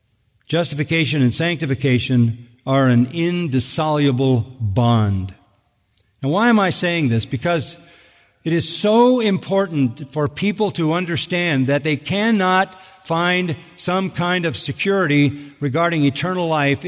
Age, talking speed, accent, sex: 50-69, 115 wpm, American, male